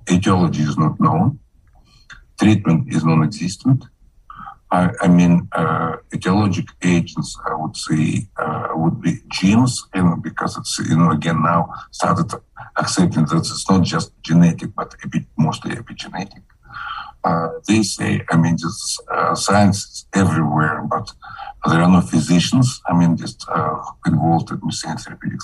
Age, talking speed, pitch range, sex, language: 50-69, 145 wpm, 85-100 Hz, male, English